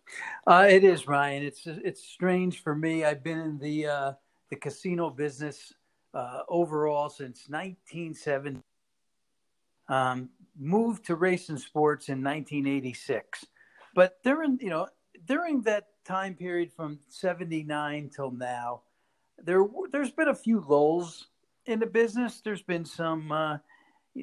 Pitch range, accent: 145-185 Hz, American